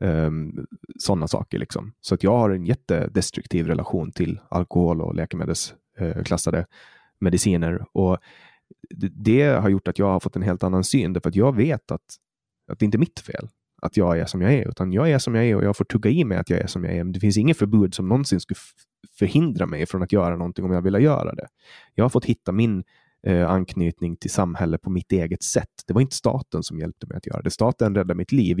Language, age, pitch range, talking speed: Swedish, 20-39, 90-110 Hz, 235 wpm